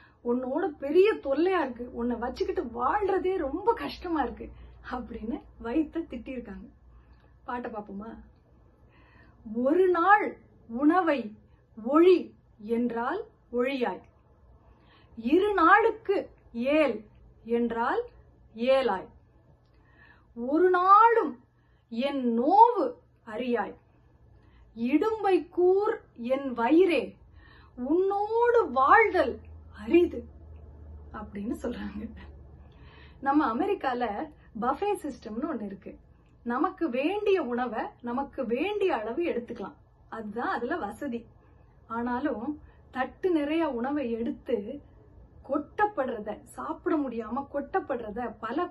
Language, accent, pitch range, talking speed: Tamil, native, 230-325 Hz, 35 wpm